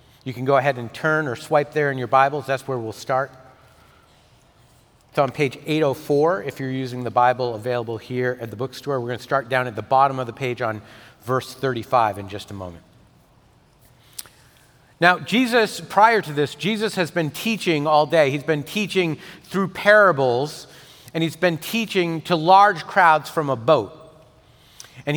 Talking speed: 180 wpm